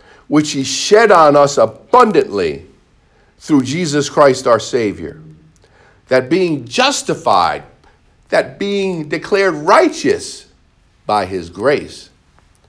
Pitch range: 85-135 Hz